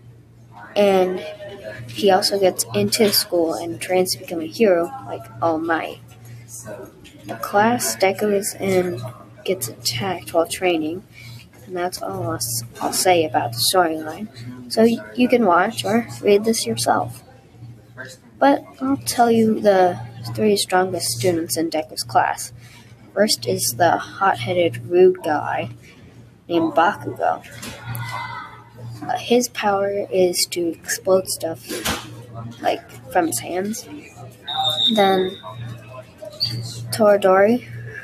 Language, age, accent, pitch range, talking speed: English, 20-39, American, 120-195 Hz, 115 wpm